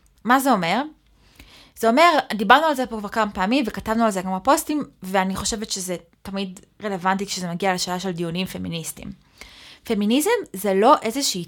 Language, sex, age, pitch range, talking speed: Hebrew, female, 20-39, 185-235 Hz, 165 wpm